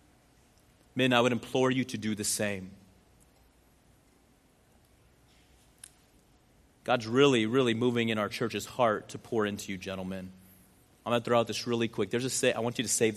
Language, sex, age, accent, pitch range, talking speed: English, male, 30-49, American, 105-125 Hz, 175 wpm